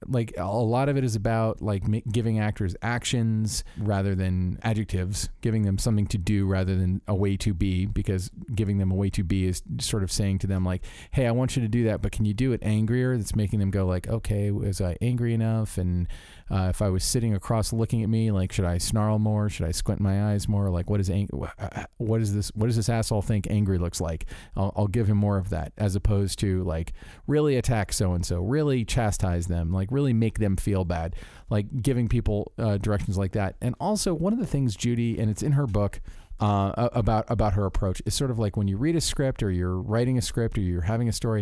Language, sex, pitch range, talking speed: English, male, 95-115 Hz, 240 wpm